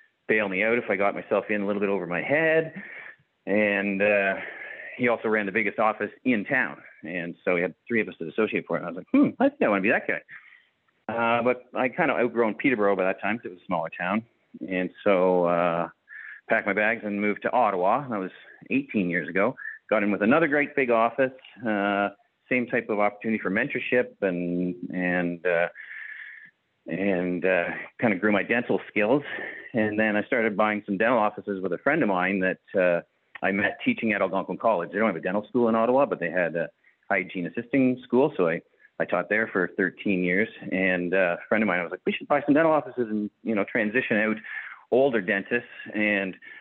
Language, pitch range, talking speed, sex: English, 95-120 Hz, 215 wpm, male